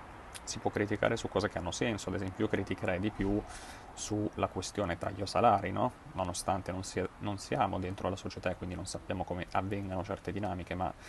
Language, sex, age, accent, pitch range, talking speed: Italian, male, 30-49, native, 95-110 Hz, 195 wpm